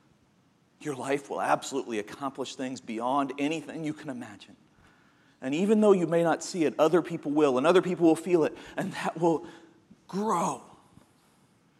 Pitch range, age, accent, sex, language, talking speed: 150-185 Hz, 40-59, American, male, English, 165 wpm